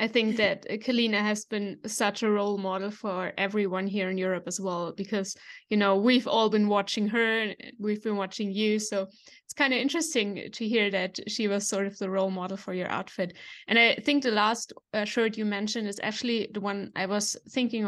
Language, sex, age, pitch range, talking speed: English, female, 20-39, 195-225 Hz, 215 wpm